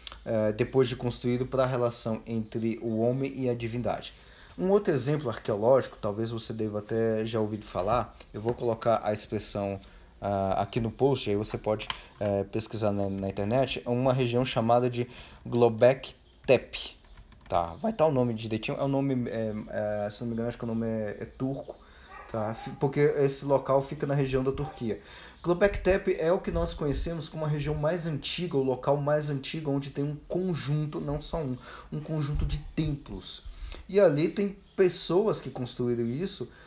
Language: Portuguese